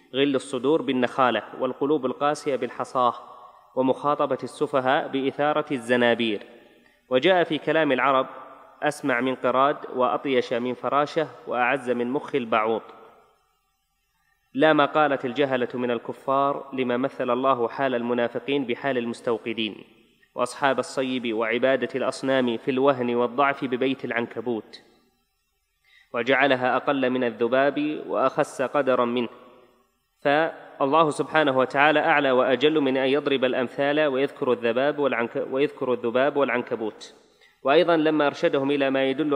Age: 30-49